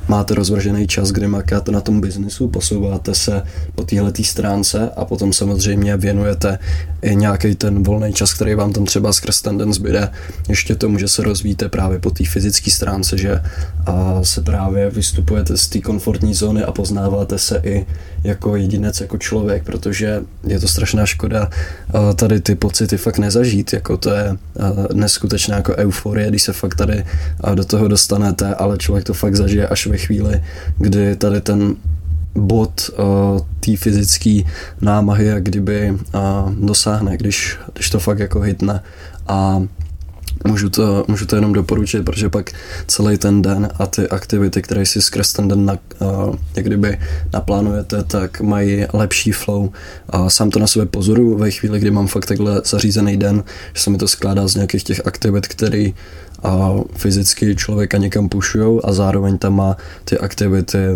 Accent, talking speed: native, 165 wpm